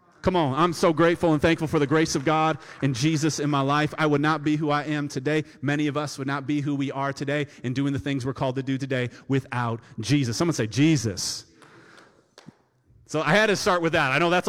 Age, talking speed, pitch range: 30-49, 245 wpm, 135-175 Hz